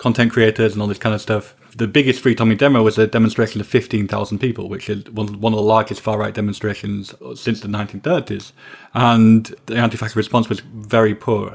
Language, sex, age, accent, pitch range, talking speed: English, male, 20-39, British, 105-120 Hz, 215 wpm